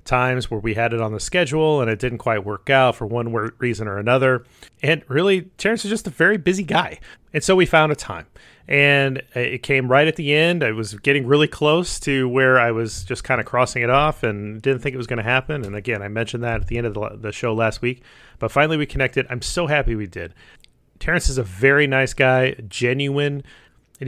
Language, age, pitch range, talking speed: English, 30-49, 115-145 Hz, 235 wpm